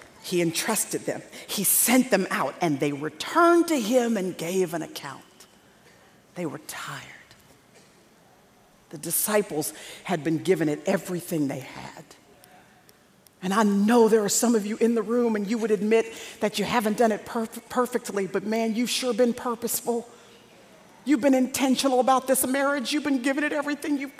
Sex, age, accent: female, 50-69, American